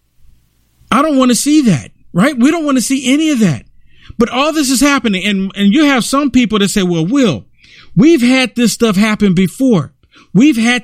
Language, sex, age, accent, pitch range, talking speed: English, male, 50-69, American, 165-240 Hz, 210 wpm